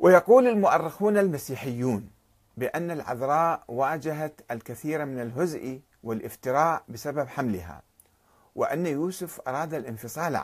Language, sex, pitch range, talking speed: Arabic, male, 115-180 Hz, 90 wpm